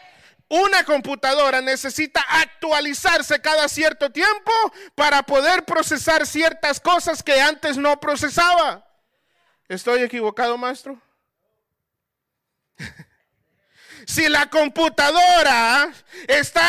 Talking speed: 85 wpm